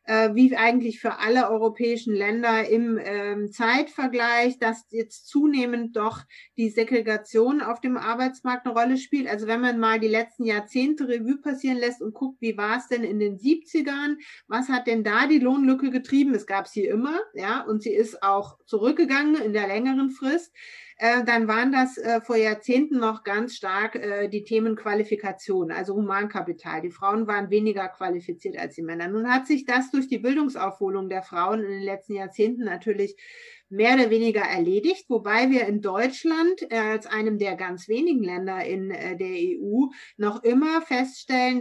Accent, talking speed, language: German, 165 wpm, German